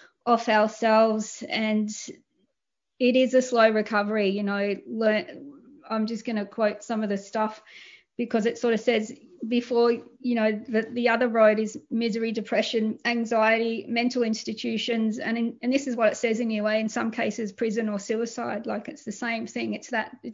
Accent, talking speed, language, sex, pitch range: Australian, 180 wpm, English, female, 220-255 Hz